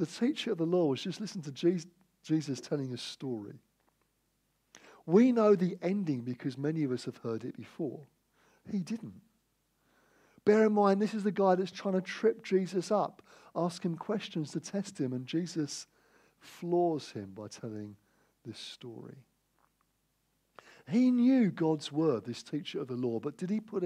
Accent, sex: British, male